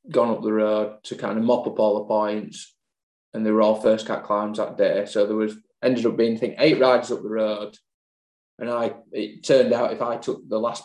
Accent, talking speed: British, 240 wpm